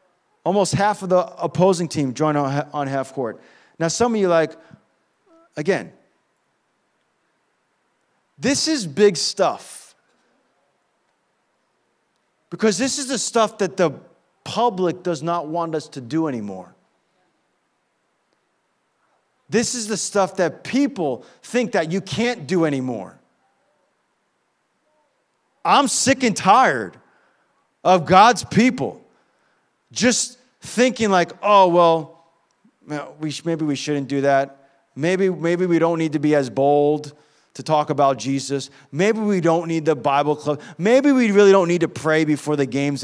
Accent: American